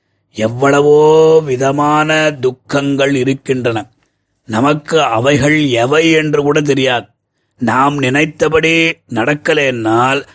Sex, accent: male, native